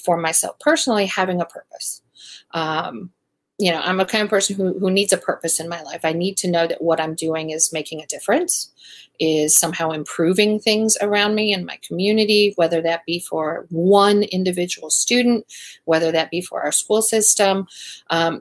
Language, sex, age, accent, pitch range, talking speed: English, female, 40-59, American, 165-205 Hz, 190 wpm